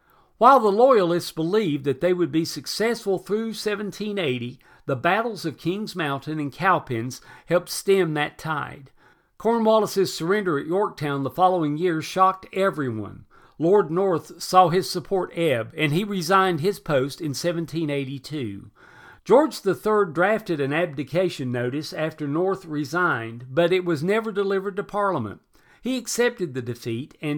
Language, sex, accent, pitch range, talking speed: English, male, American, 140-190 Hz, 140 wpm